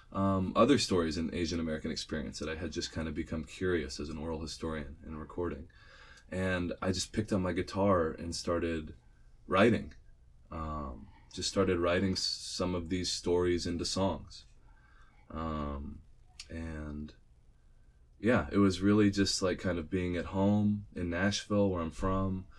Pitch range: 80-95 Hz